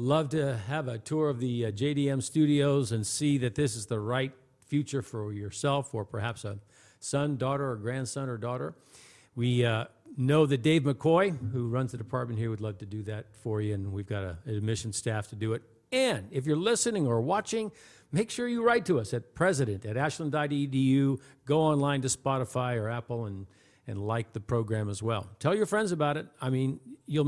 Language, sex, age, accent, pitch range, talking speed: English, male, 50-69, American, 120-150 Hz, 205 wpm